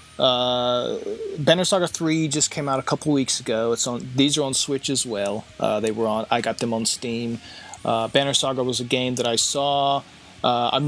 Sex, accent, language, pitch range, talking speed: male, American, English, 115-150 Hz, 215 wpm